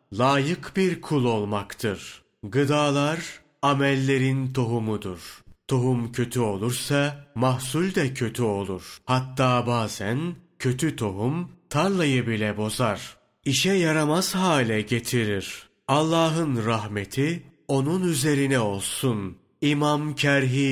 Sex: male